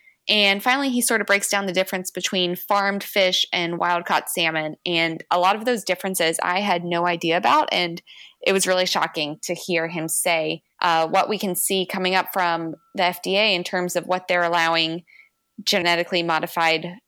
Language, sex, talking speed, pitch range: English, female, 185 wpm, 175-215 Hz